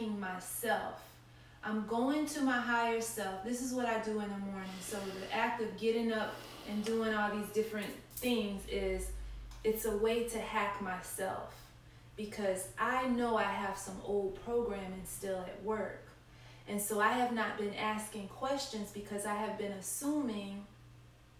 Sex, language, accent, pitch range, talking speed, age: female, English, American, 185-220 Hz, 165 wpm, 30-49